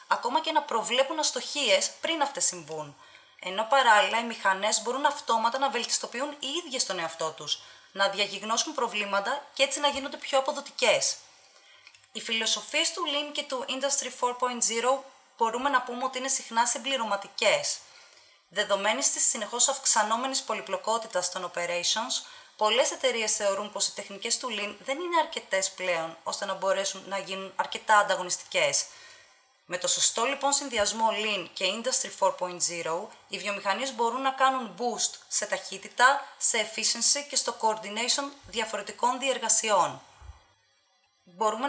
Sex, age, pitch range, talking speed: female, 20-39, 195-270 Hz, 140 wpm